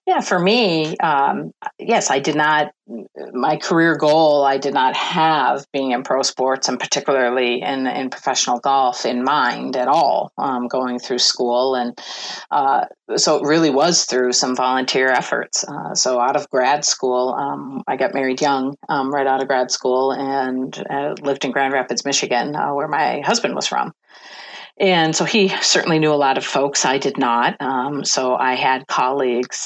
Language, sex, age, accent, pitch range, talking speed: English, female, 40-59, American, 125-140 Hz, 180 wpm